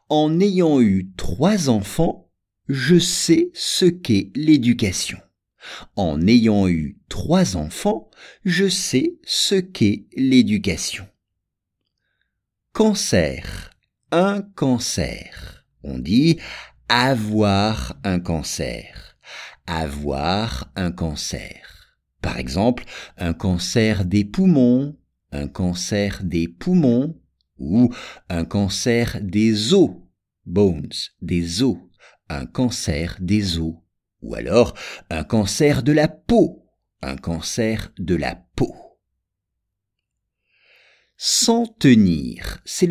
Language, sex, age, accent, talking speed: English, male, 50-69, French, 95 wpm